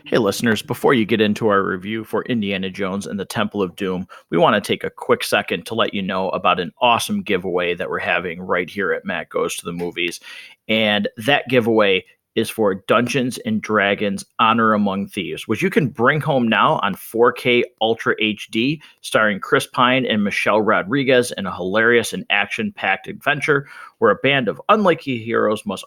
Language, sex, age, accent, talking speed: English, male, 30-49, American, 190 wpm